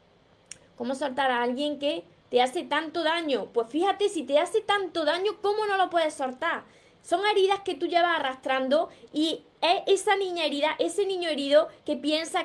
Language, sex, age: Spanish, female, 20-39